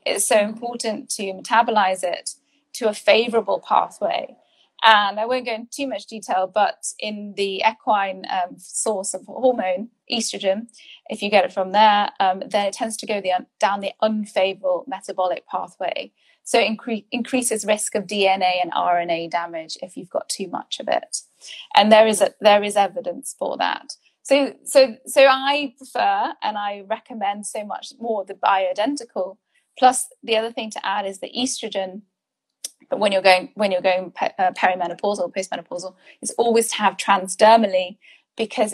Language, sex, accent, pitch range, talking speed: English, female, British, 195-240 Hz, 170 wpm